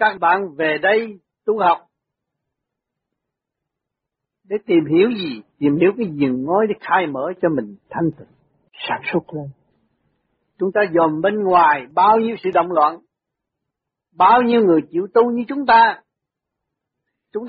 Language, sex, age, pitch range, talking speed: Vietnamese, male, 60-79, 150-210 Hz, 150 wpm